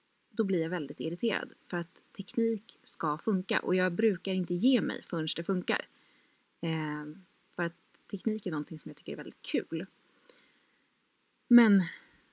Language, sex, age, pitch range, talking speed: Swedish, female, 20-39, 175-245 Hz, 155 wpm